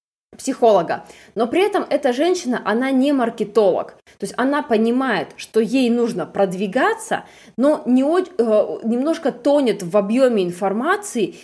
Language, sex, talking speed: Russian, female, 120 wpm